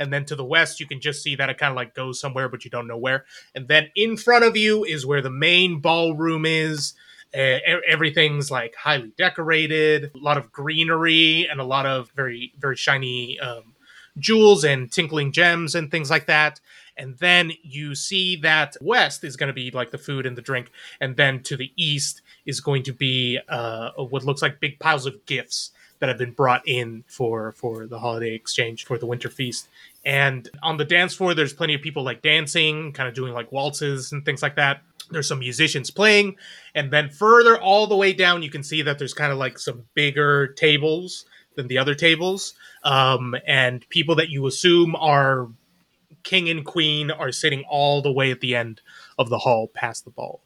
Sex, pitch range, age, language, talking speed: male, 130-160 Hz, 20-39, English, 210 wpm